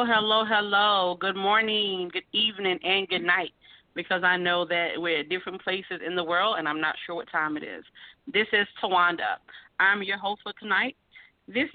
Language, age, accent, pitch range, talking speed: English, 40-59, American, 185-250 Hz, 185 wpm